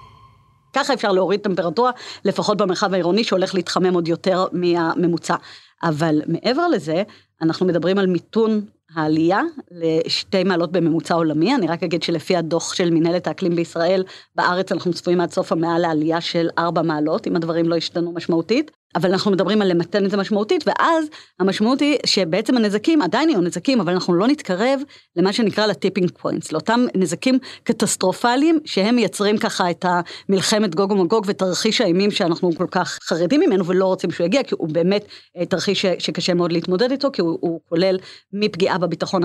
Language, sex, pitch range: Hebrew, female, 170-210 Hz